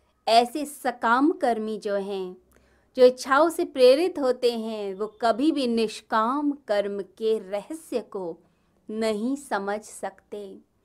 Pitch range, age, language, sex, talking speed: 200-260 Hz, 20-39, Hindi, female, 120 wpm